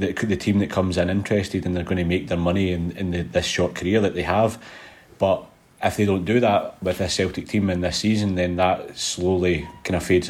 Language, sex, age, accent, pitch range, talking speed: English, male, 30-49, British, 90-100 Hz, 240 wpm